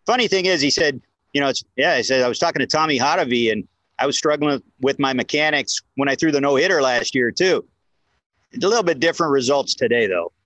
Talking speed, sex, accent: 240 wpm, male, American